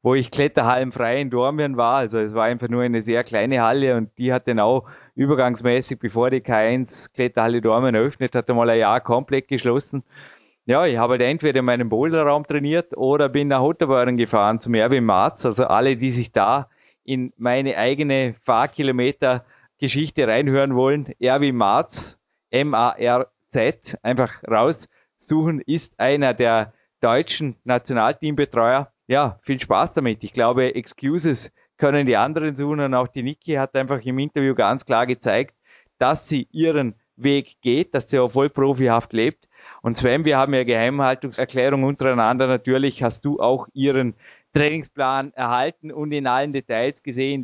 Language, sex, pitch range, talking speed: German, male, 125-145 Hz, 155 wpm